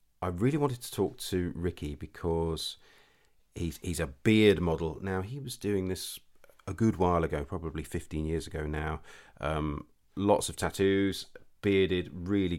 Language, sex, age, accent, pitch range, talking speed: English, male, 40-59, British, 75-90 Hz, 155 wpm